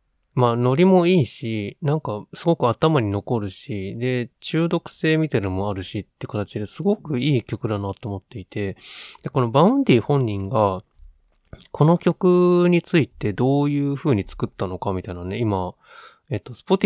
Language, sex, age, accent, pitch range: Japanese, male, 20-39, native, 100-145 Hz